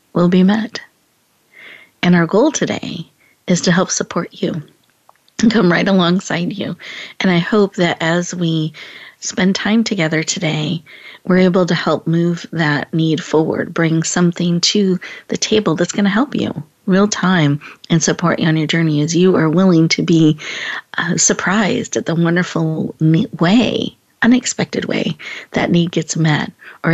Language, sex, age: English, female, 40-59